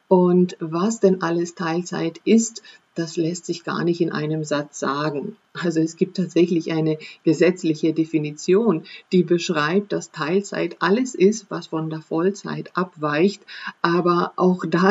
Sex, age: female, 50-69